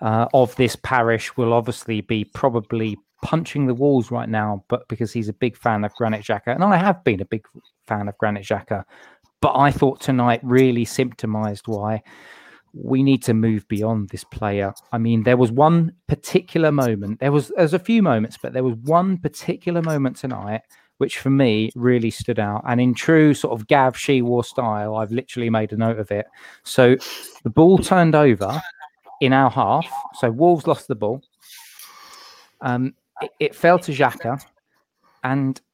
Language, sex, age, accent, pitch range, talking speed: English, male, 20-39, British, 115-145 Hz, 185 wpm